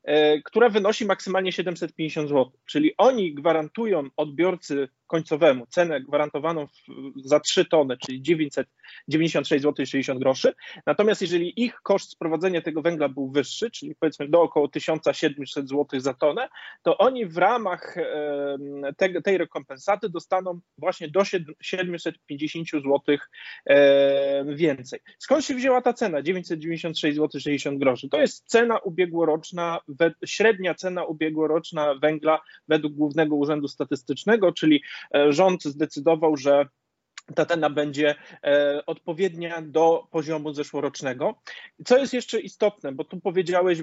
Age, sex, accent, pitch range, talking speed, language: 30-49, male, native, 145-180 Hz, 120 wpm, Polish